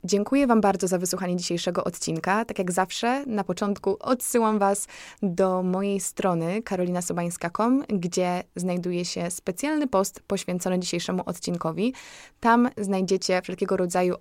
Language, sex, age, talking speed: Polish, female, 20-39, 125 wpm